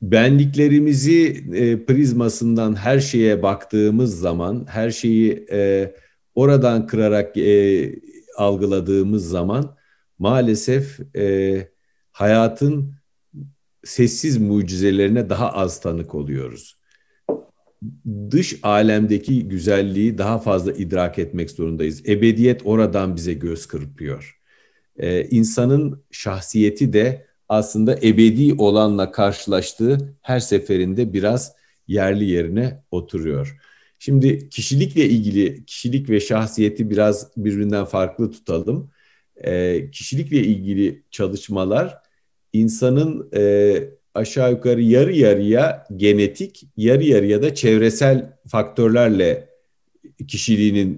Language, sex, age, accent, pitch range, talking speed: Turkish, male, 50-69, native, 100-130 Hz, 95 wpm